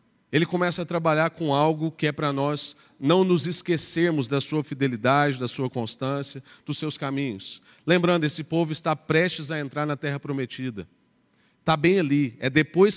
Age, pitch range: 40-59, 135-170 Hz